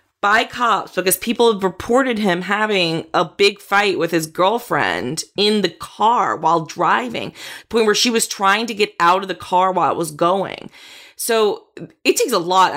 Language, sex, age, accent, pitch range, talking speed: English, female, 20-39, American, 170-230 Hz, 185 wpm